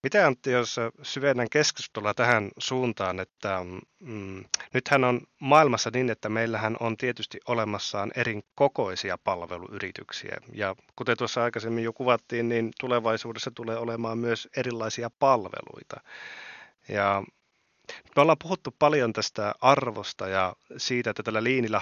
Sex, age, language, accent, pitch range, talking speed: male, 30-49, Finnish, native, 105-130 Hz, 125 wpm